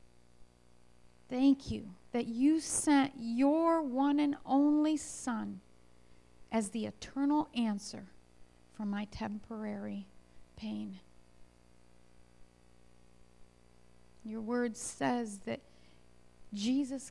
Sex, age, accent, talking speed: female, 40-59, American, 80 wpm